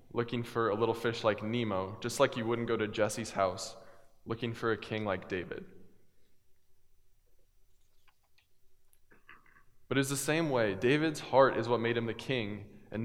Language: English